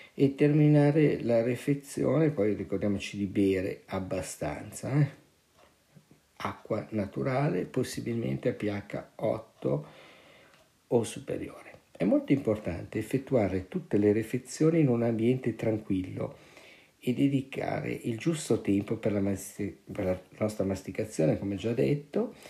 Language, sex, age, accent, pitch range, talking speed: Italian, male, 50-69, native, 105-140 Hz, 110 wpm